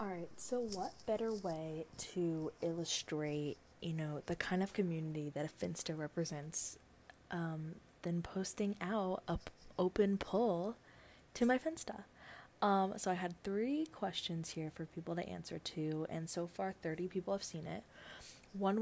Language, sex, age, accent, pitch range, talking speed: English, female, 20-39, American, 170-195 Hz, 155 wpm